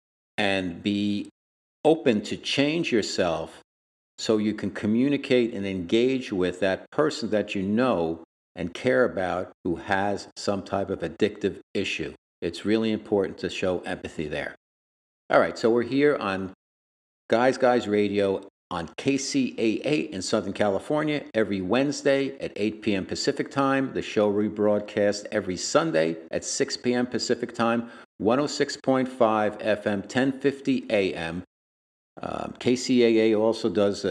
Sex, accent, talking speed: male, American, 130 wpm